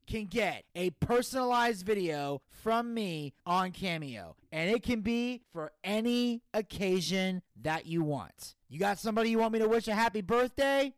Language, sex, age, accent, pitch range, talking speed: English, male, 30-49, American, 185-245 Hz, 165 wpm